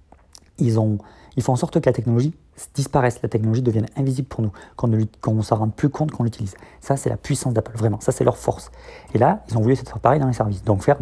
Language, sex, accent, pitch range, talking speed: French, male, French, 105-130 Hz, 260 wpm